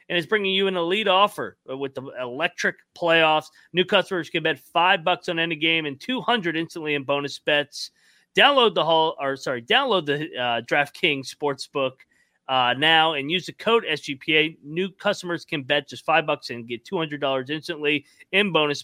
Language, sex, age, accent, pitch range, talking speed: English, male, 30-49, American, 140-175 Hz, 190 wpm